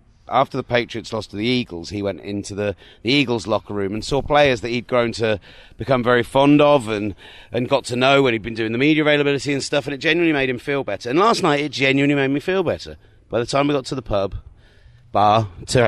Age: 30-49